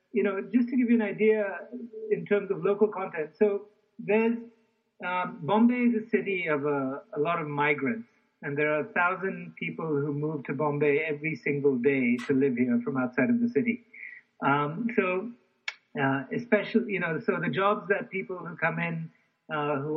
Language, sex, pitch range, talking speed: English, male, 145-210 Hz, 190 wpm